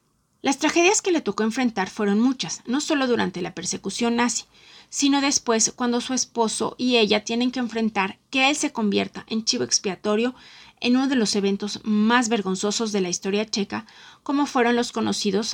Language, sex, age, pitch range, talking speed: Spanish, female, 30-49, 200-250 Hz, 180 wpm